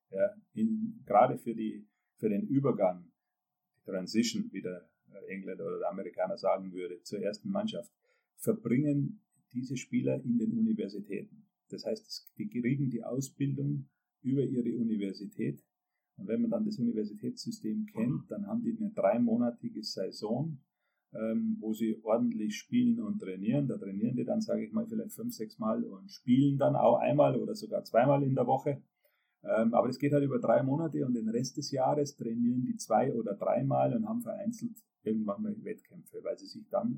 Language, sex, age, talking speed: German, male, 40-59, 170 wpm